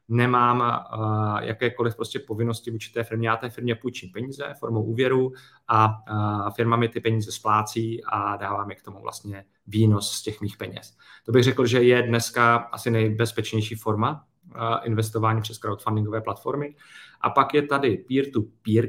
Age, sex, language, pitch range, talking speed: 30-49, male, Czech, 110-120 Hz, 155 wpm